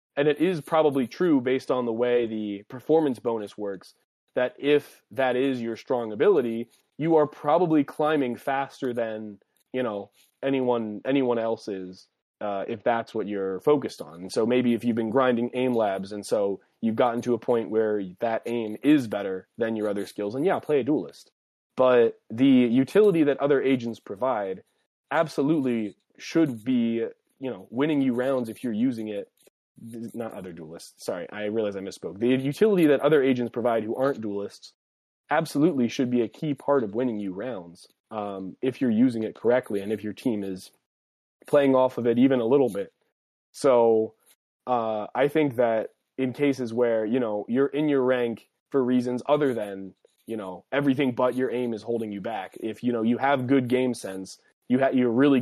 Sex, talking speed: male, 185 wpm